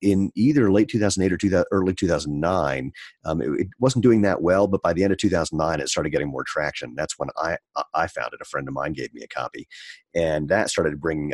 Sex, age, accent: male, 40-59, American